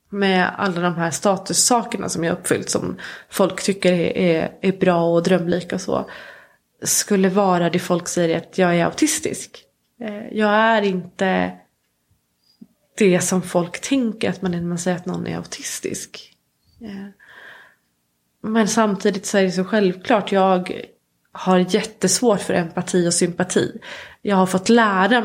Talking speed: 150 wpm